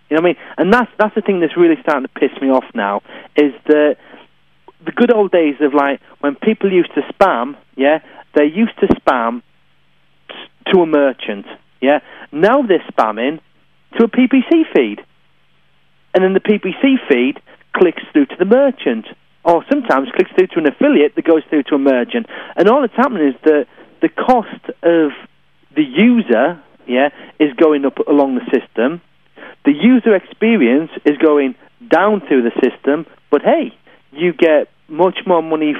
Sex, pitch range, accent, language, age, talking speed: male, 135-225 Hz, British, English, 40-59, 175 wpm